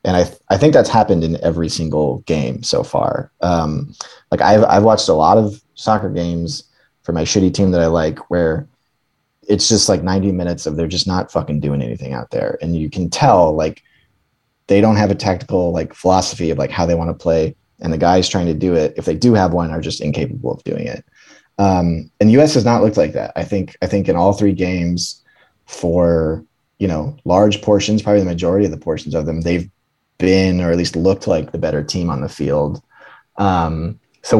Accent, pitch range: American, 85-100 Hz